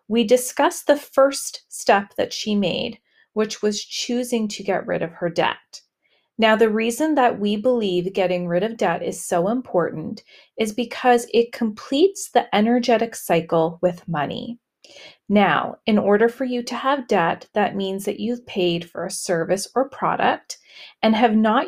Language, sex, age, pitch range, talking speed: English, female, 30-49, 180-240 Hz, 165 wpm